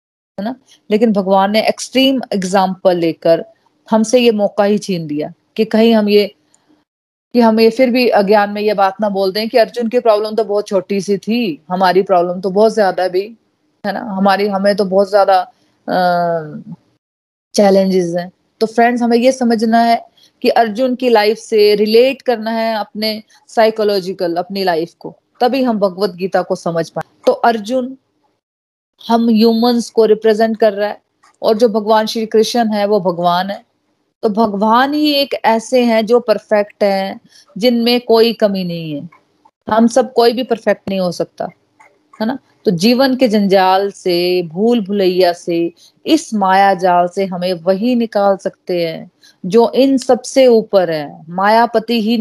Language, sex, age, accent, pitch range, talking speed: Hindi, female, 20-39, native, 190-235 Hz, 160 wpm